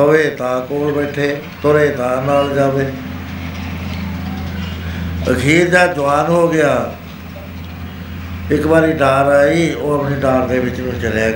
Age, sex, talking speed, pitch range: 60-79, male, 125 wpm, 120-150 Hz